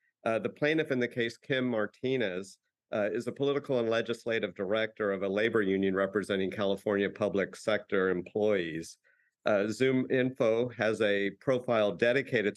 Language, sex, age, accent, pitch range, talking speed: English, male, 50-69, American, 100-115 Hz, 150 wpm